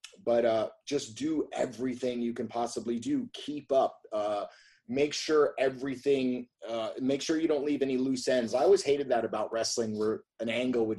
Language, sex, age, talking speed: English, male, 30-49, 185 wpm